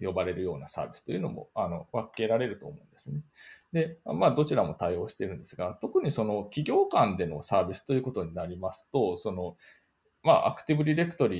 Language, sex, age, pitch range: Japanese, male, 20-39, 100-150 Hz